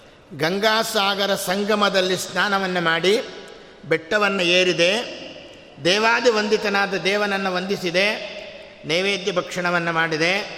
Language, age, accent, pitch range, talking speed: Kannada, 50-69, native, 160-205 Hz, 75 wpm